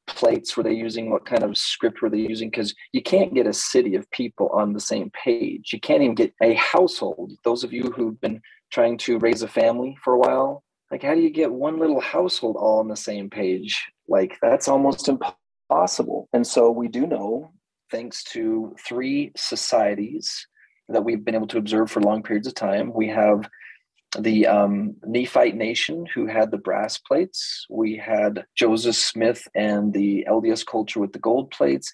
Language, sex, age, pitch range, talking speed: English, male, 30-49, 110-150 Hz, 190 wpm